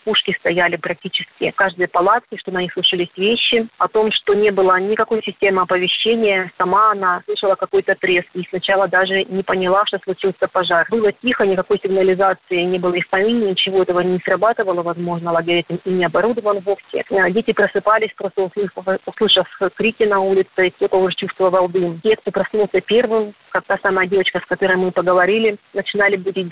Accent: native